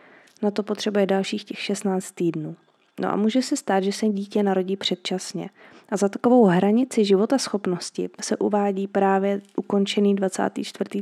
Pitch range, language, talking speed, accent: 190-220 Hz, Czech, 150 wpm, native